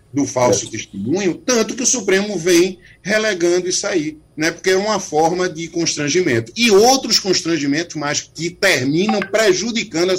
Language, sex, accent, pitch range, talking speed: Portuguese, male, Brazilian, 155-230 Hz, 155 wpm